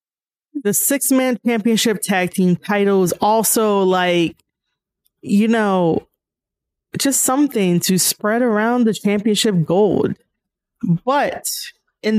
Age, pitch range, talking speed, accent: 20-39, 185-225 Hz, 105 wpm, American